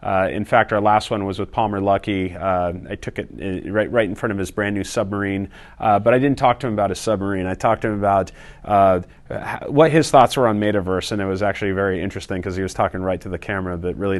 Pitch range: 95-115 Hz